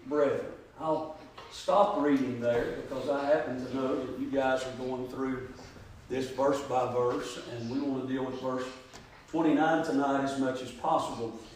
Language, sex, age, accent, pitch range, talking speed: English, male, 50-69, American, 135-155 Hz, 170 wpm